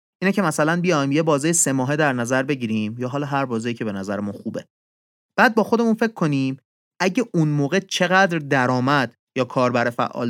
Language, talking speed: Persian, 185 wpm